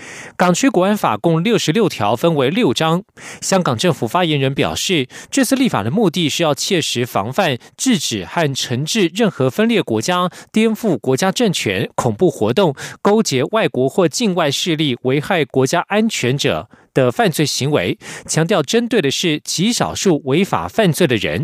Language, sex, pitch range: German, male, 140-205 Hz